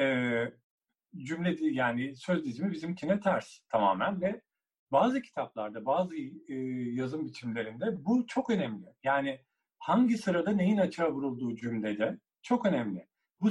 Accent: native